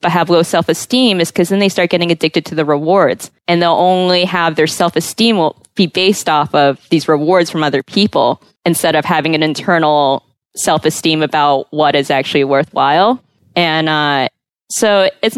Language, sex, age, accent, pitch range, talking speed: English, female, 20-39, American, 150-180 Hz, 175 wpm